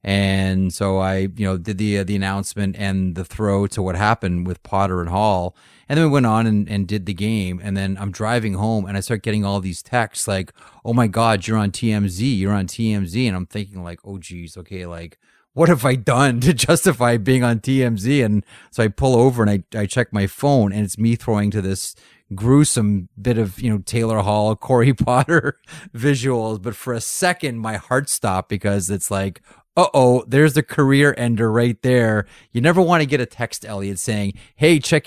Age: 30-49